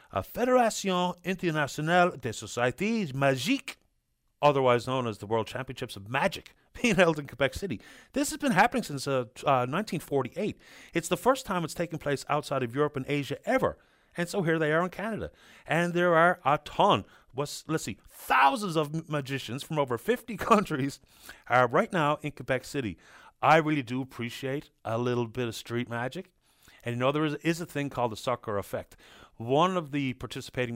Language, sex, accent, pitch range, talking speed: English, male, American, 125-165 Hz, 180 wpm